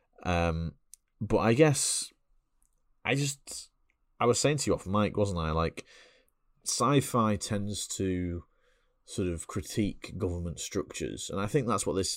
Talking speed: 155 wpm